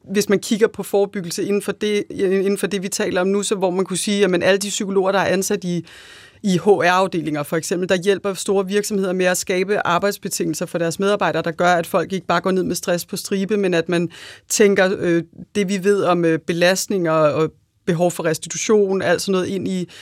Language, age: Danish, 30-49